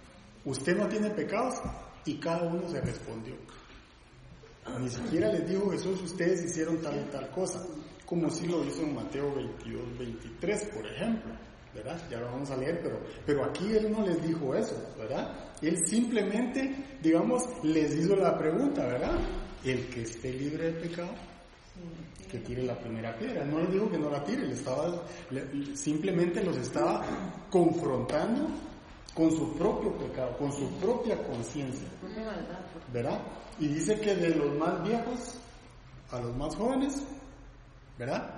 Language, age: Spanish, 40-59